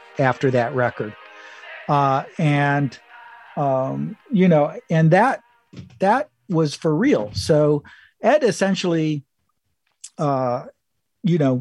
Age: 50-69